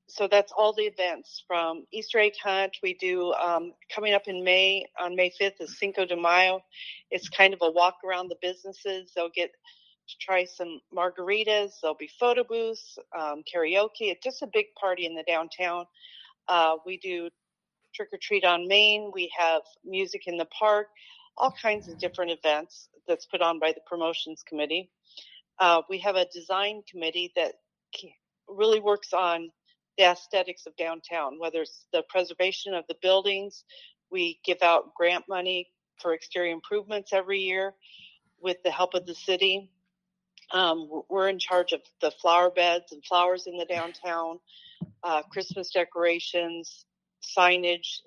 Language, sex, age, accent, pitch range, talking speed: English, female, 40-59, American, 170-200 Hz, 160 wpm